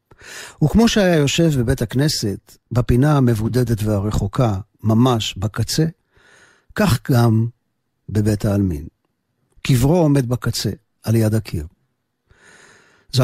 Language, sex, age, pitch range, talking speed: Hebrew, male, 50-69, 110-135 Hz, 95 wpm